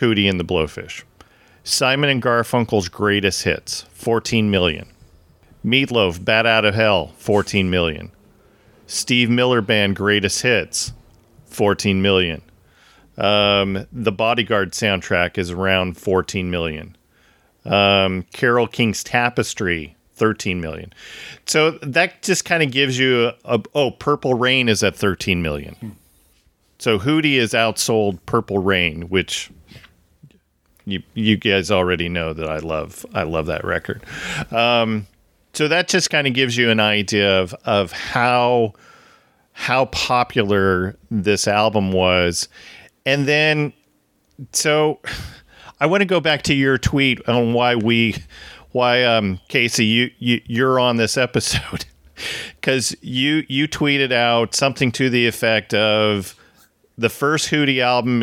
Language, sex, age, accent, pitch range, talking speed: English, male, 40-59, American, 95-125 Hz, 135 wpm